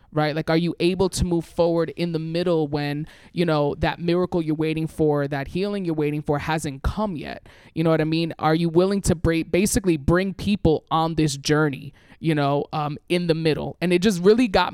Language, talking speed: English, 215 wpm